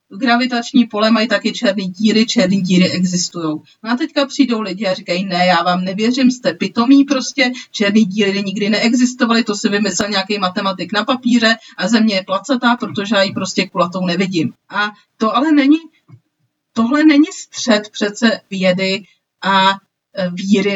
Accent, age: native, 40-59